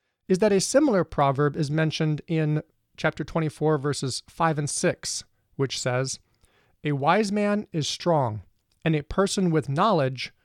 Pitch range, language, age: 140-185 Hz, English, 40-59